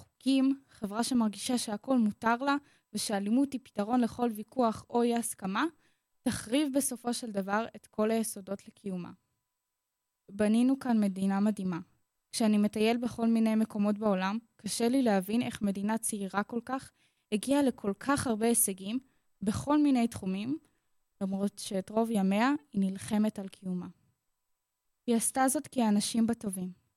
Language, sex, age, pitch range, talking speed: Hebrew, female, 20-39, 200-240 Hz, 140 wpm